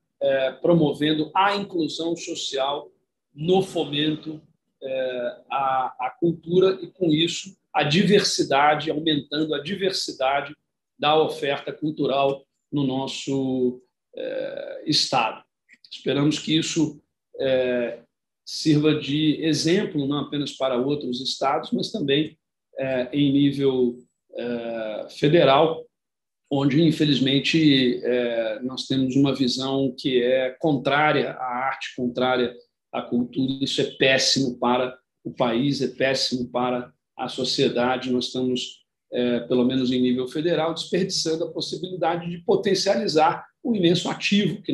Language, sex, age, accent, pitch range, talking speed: Portuguese, male, 40-59, Brazilian, 130-170 Hz, 105 wpm